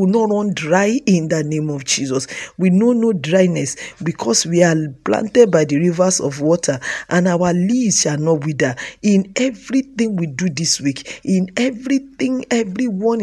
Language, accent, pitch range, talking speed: English, Nigerian, 155-210 Hz, 170 wpm